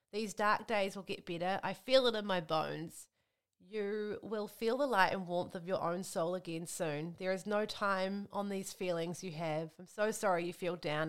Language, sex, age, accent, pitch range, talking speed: English, female, 30-49, Australian, 175-225 Hz, 215 wpm